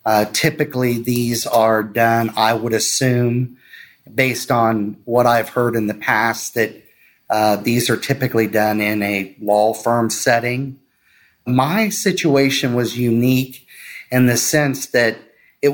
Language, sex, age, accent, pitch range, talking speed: English, male, 30-49, American, 120-140 Hz, 135 wpm